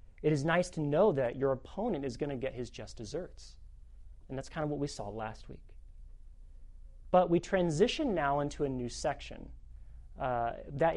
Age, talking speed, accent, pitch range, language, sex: 30-49, 185 wpm, American, 125-195 Hz, English, male